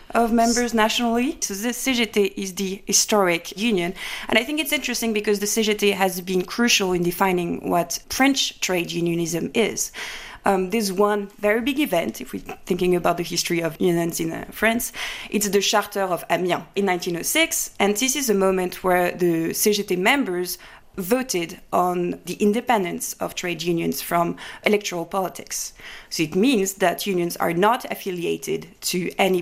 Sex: female